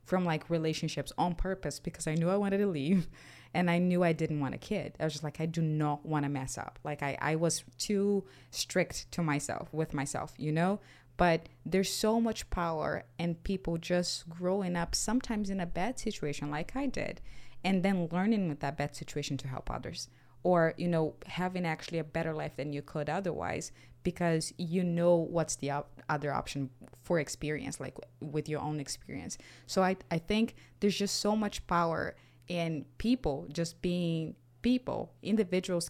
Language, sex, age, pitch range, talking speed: English, female, 20-39, 150-185 Hz, 190 wpm